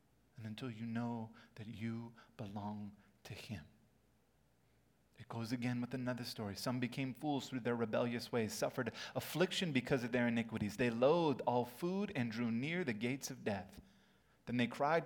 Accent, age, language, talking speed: American, 30-49, English, 165 wpm